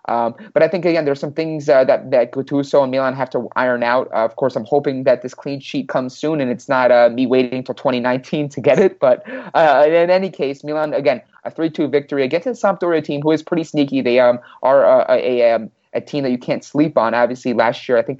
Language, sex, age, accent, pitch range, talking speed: English, male, 30-49, American, 120-145 Hz, 255 wpm